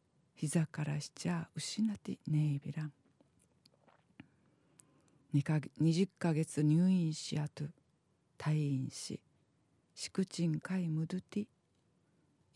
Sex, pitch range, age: female, 150-185 Hz, 50-69